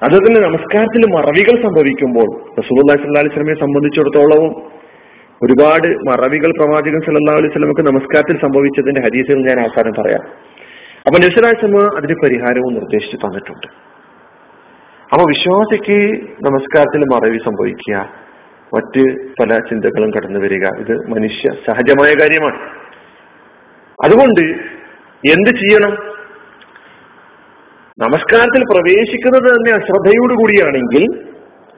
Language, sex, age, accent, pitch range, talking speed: Malayalam, male, 40-59, native, 135-210 Hz, 85 wpm